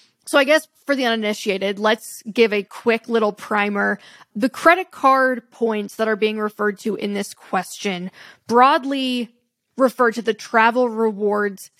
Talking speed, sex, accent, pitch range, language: 155 wpm, female, American, 210-245 Hz, English